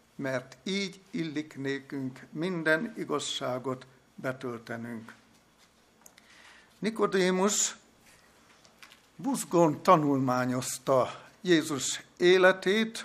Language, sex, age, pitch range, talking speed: Hungarian, male, 60-79, 145-220 Hz, 55 wpm